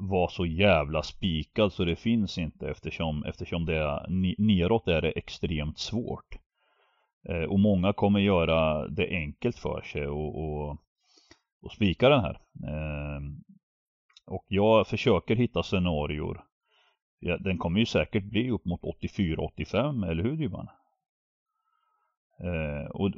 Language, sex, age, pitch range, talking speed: Swedish, male, 30-49, 85-115 Hz, 135 wpm